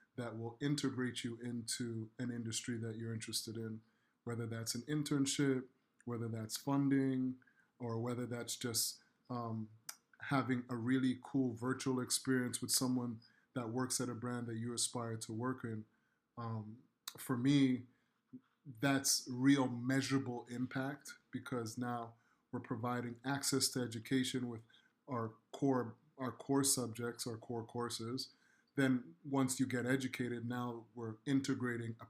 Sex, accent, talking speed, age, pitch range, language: male, American, 135 wpm, 30-49, 115-130 Hz, English